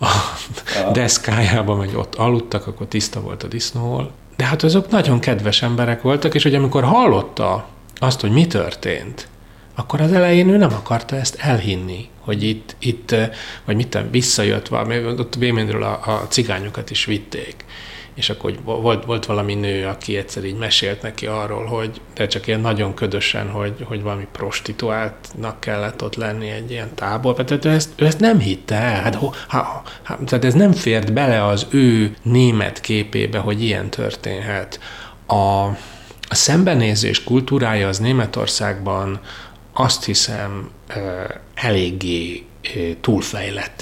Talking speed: 145 wpm